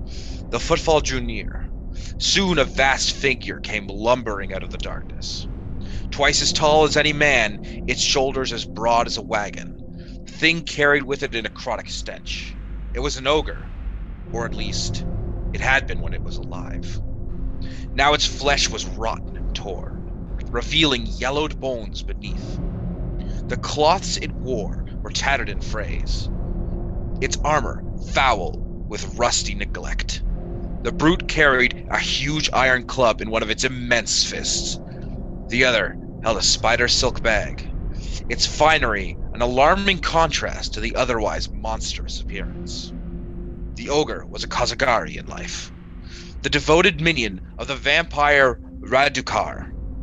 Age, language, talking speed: 30-49, English, 140 wpm